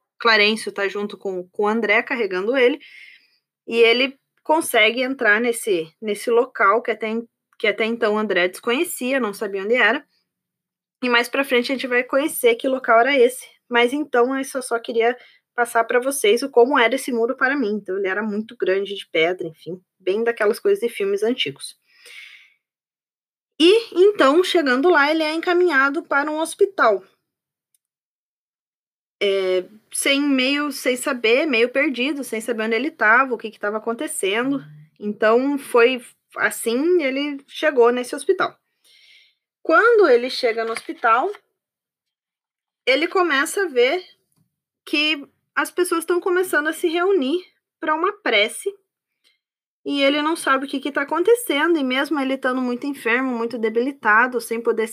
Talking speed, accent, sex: 160 wpm, Brazilian, female